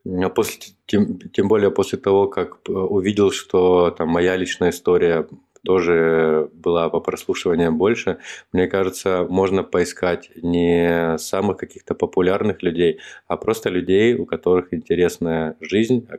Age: 20-39